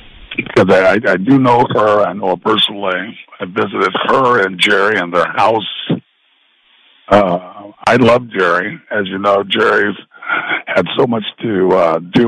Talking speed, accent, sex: 155 wpm, American, male